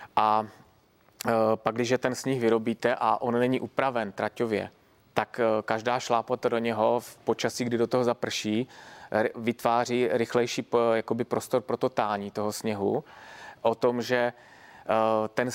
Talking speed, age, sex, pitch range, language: 130 wpm, 20-39, male, 110-125 Hz, Czech